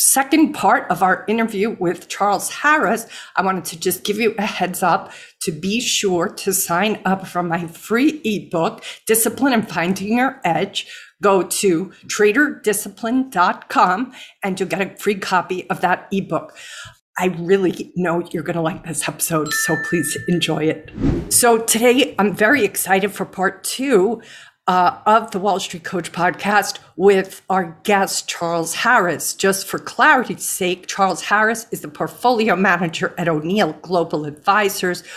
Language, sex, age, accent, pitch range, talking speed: English, female, 50-69, American, 170-210 Hz, 155 wpm